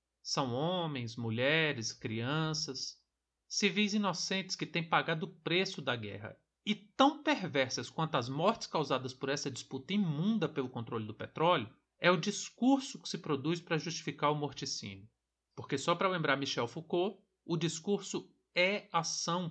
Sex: male